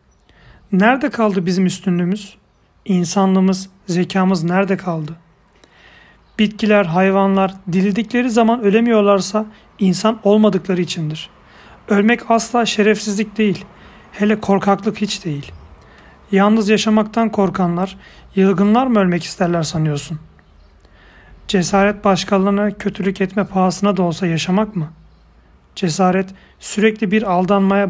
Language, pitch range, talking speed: Turkish, 175-210 Hz, 95 wpm